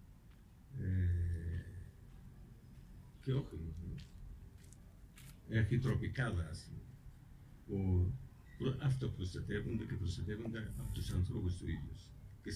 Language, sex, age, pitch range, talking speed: Greek, male, 50-69, 90-135 Hz, 85 wpm